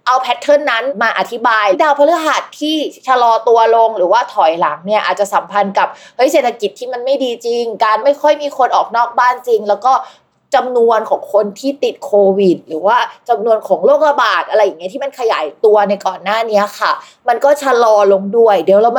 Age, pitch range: 20-39, 200-265 Hz